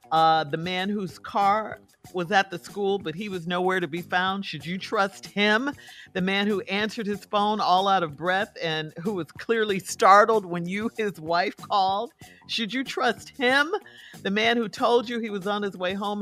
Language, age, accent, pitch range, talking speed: English, 50-69, American, 165-220 Hz, 205 wpm